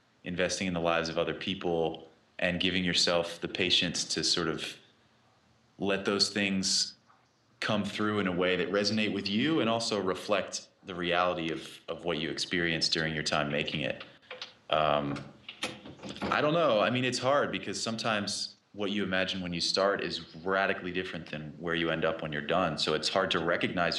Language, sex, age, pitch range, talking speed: English, male, 30-49, 85-100 Hz, 185 wpm